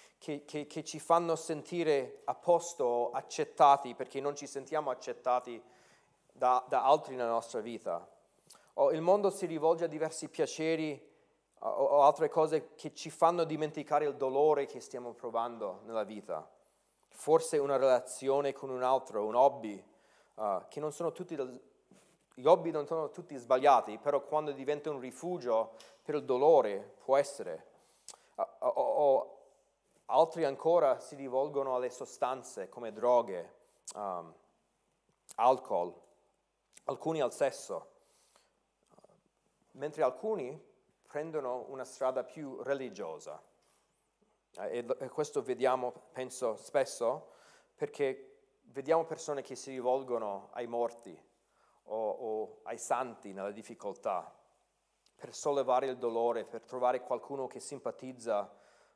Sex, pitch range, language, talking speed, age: male, 125-165 Hz, Italian, 125 wpm, 30-49